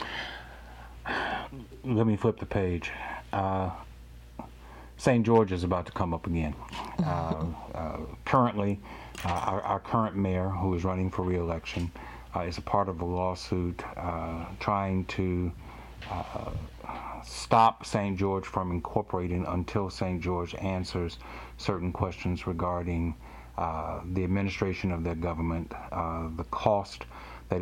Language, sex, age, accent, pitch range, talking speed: English, male, 60-79, American, 80-95 Hz, 130 wpm